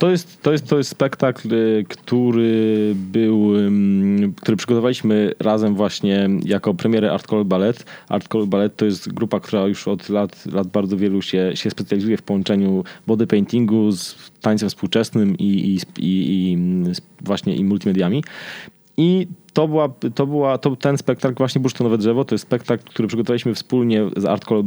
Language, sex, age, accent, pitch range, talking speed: Polish, male, 20-39, native, 100-125 Hz, 165 wpm